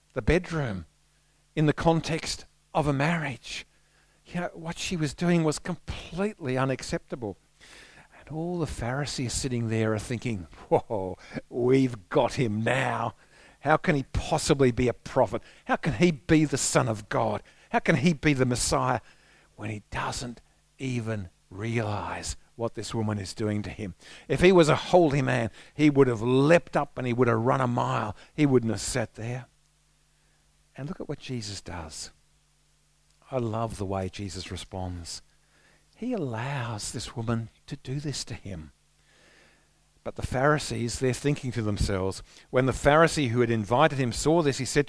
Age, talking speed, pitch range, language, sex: 50-69, 165 wpm, 110-150 Hz, English, male